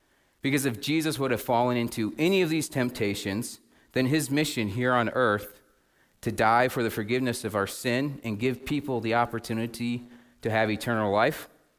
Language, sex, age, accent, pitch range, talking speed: English, male, 30-49, American, 100-130 Hz, 175 wpm